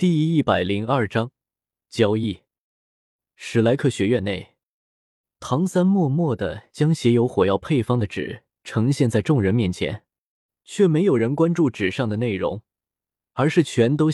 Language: Chinese